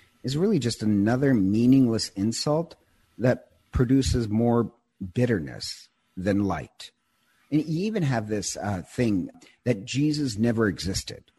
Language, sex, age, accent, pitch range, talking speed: English, male, 50-69, American, 105-135 Hz, 120 wpm